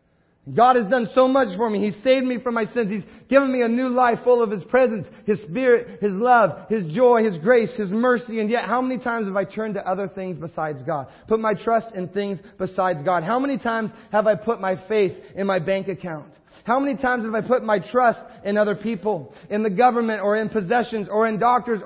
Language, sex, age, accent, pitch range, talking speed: English, male, 30-49, American, 195-250 Hz, 235 wpm